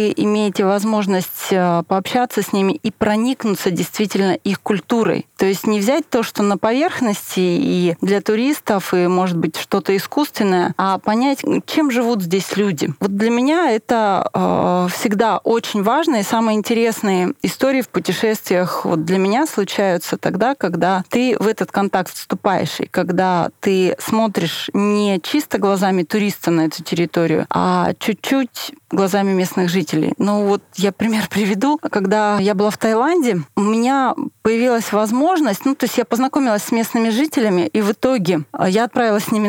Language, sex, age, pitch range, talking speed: Russian, female, 30-49, 195-245 Hz, 155 wpm